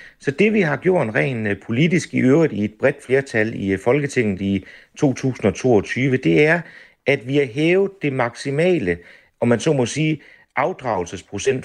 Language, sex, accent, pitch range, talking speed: Danish, male, native, 115-160 Hz, 160 wpm